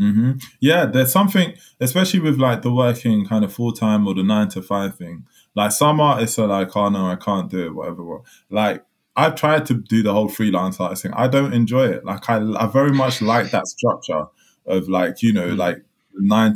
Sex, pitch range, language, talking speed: male, 95-120 Hz, English, 220 wpm